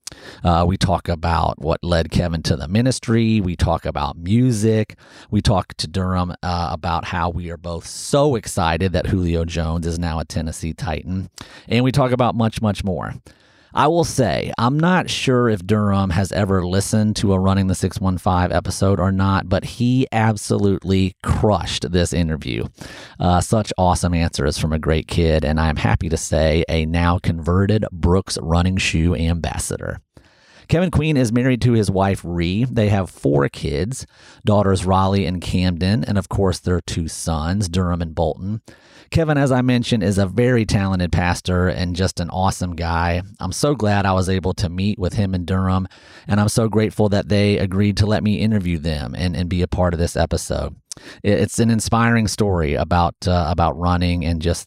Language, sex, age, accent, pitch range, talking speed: English, male, 40-59, American, 85-105 Hz, 180 wpm